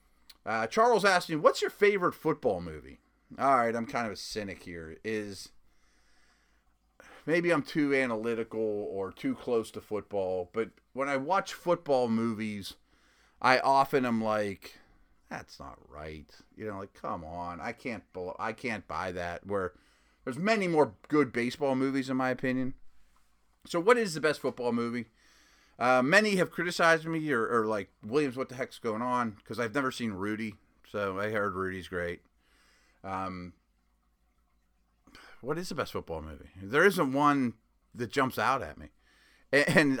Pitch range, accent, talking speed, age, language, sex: 95-145 Hz, American, 160 wpm, 30-49, English, male